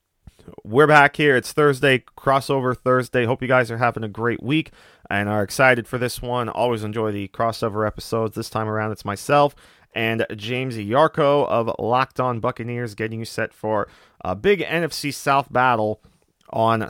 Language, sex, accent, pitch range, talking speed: English, male, American, 105-130 Hz, 170 wpm